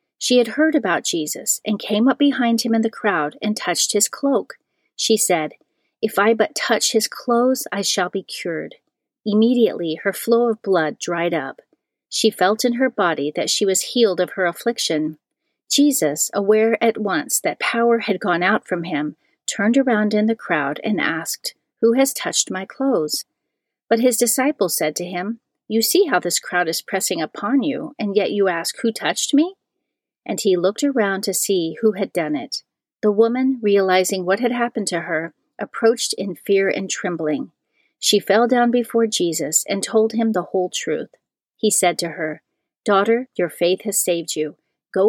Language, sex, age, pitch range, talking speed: English, female, 40-59, 180-235 Hz, 185 wpm